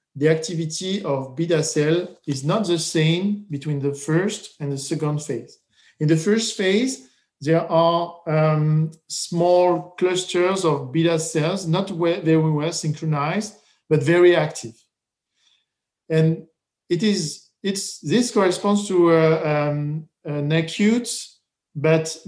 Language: English